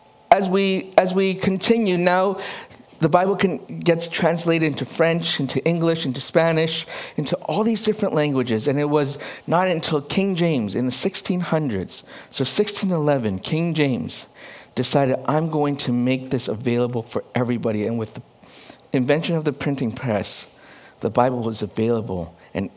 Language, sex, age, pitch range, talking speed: English, male, 60-79, 120-160 Hz, 155 wpm